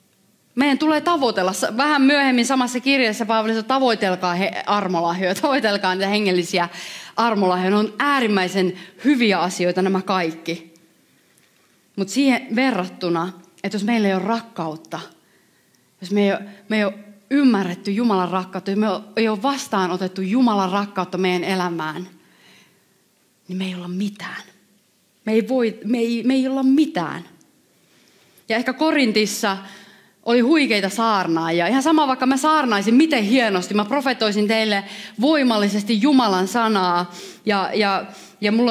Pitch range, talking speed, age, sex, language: 190-245 Hz, 135 wpm, 30-49, female, Finnish